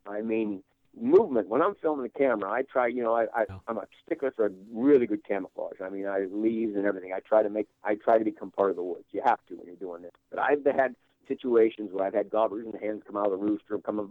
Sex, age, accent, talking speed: male, 60-79, American, 270 wpm